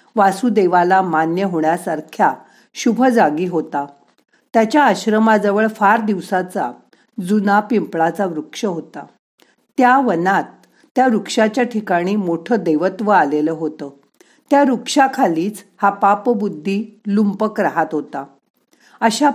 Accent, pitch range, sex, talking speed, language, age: native, 175-235 Hz, female, 100 wpm, Marathi, 50-69